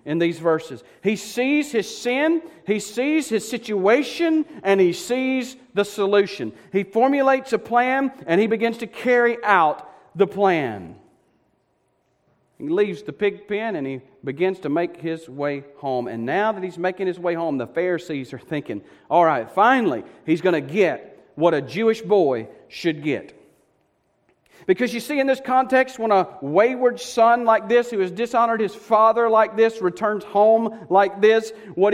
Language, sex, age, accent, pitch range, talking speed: English, male, 40-59, American, 185-240 Hz, 170 wpm